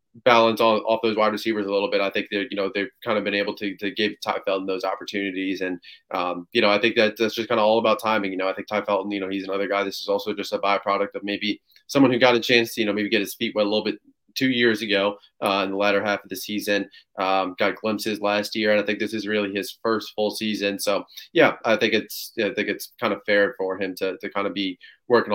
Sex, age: male, 20-39